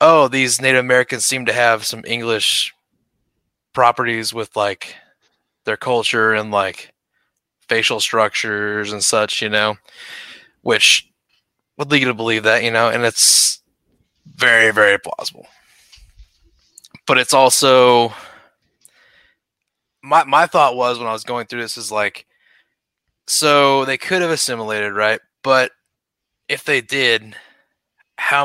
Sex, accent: male, American